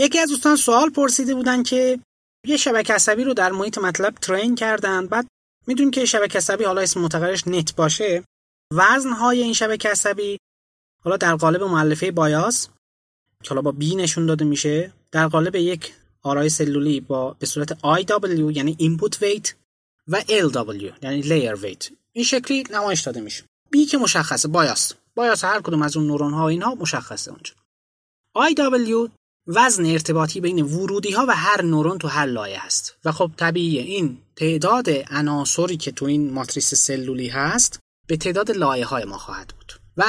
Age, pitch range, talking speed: 20-39, 150-215 Hz, 165 wpm